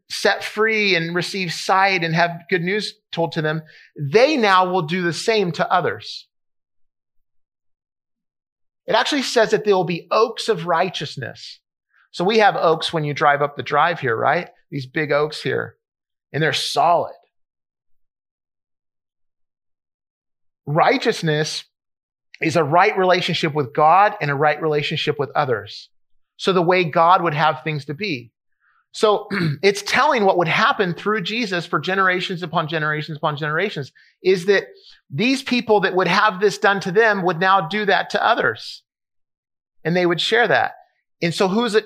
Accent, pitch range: American, 155-205 Hz